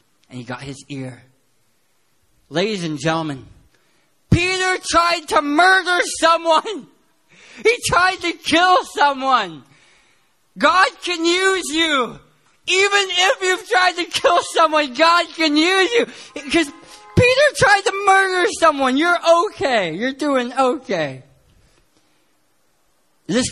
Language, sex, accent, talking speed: English, male, American, 115 wpm